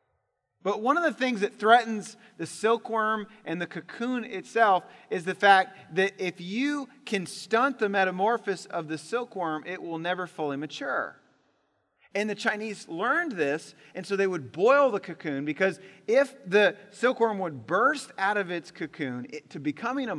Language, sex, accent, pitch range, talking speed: English, male, American, 140-220 Hz, 165 wpm